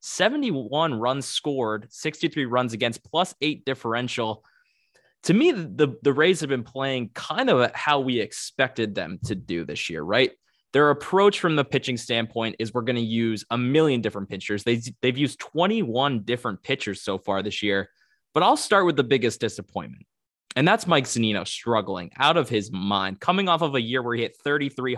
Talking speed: 190 wpm